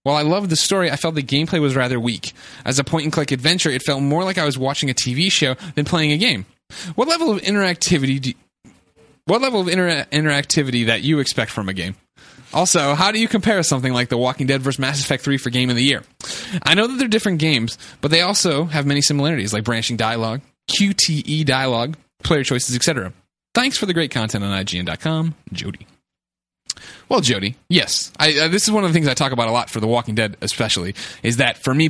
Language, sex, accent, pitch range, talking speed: English, male, American, 120-160 Hz, 225 wpm